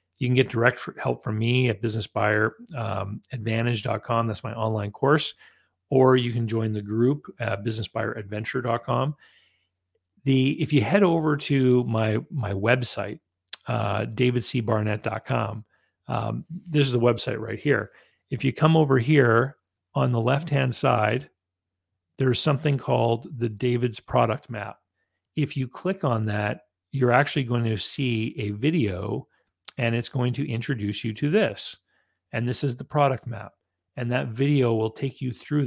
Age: 40-59